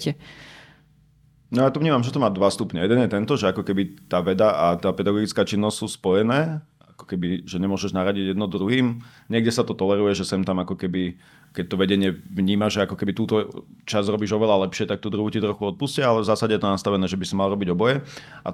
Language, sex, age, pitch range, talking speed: Slovak, male, 30-49, 95-115 Hz, 225 wpm